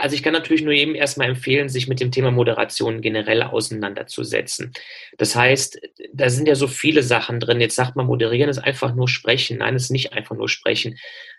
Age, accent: 30-49, German